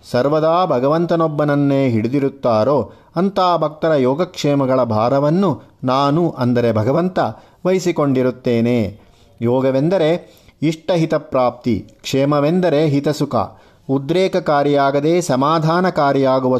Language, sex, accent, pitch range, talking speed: Kannada, male, native, 125-155 Hz, 60 wpm